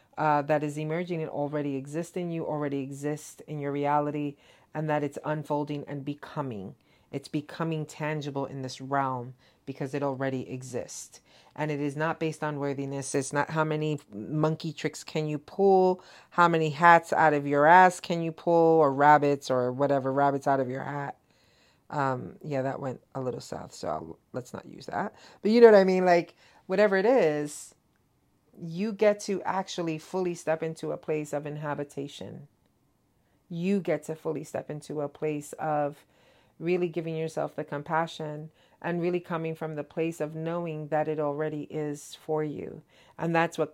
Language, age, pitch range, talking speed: English, 40-59, 145-165 Hz, 175 wpm